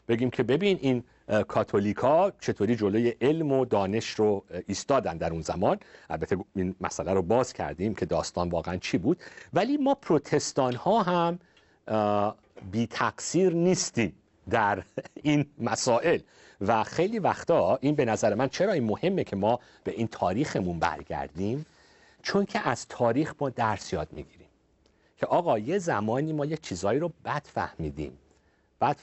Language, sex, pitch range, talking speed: Persian, male, 100-160 Hz, 145 wpm